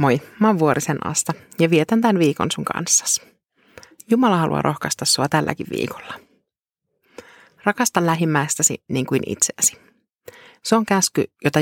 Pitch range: 145-195 Hz